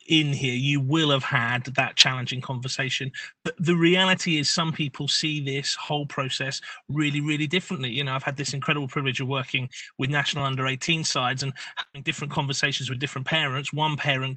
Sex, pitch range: male, 140-160 Hz